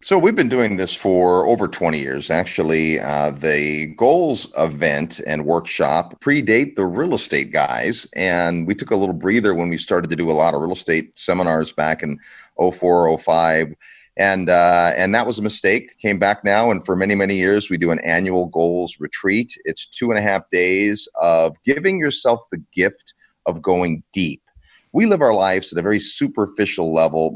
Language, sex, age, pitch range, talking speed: English, male, 40-59, 85-110 Hz, 190 wpm